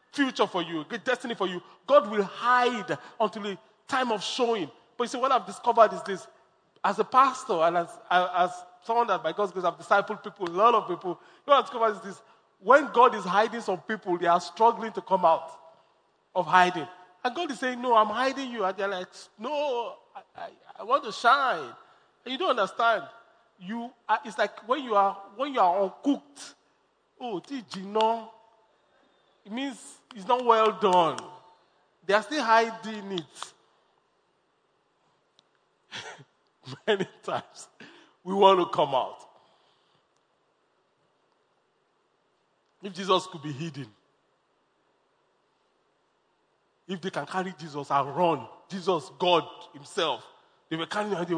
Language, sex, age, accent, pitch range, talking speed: English, male, 40-59, Nigerian, 180-235 Hz, 160 wpm